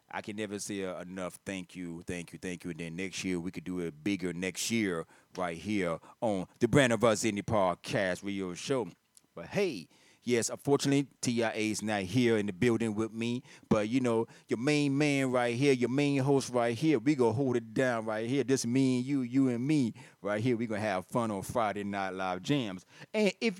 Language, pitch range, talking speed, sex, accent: English, 105-135 Hz, 225 wpm, male, American